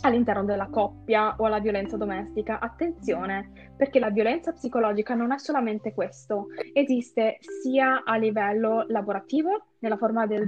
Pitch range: 195-235 Hz